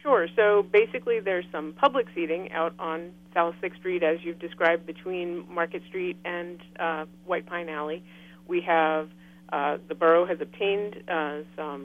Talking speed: 160 wpm